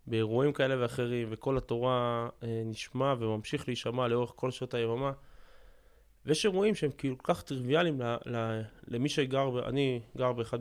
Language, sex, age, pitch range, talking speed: Hebrew, male, 20-39, 120-170 Hz, 145 wpm